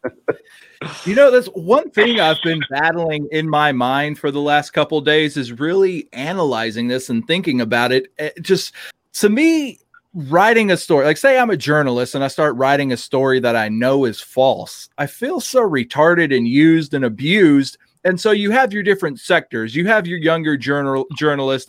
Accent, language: American, English